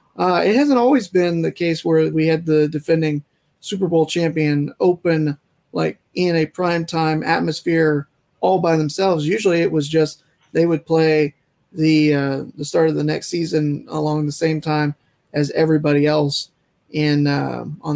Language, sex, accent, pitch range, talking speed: English, male, American, 150-190 Hz, 165 wpm